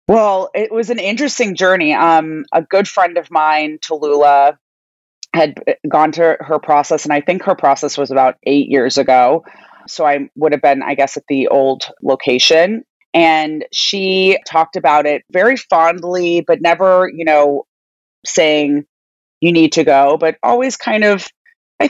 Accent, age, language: American, 30-49, English